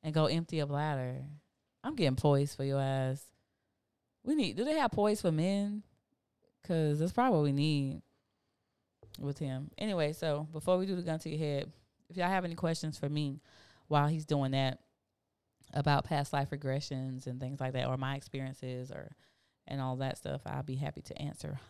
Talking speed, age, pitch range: 190 wpm, 20-39, 130-155 Hz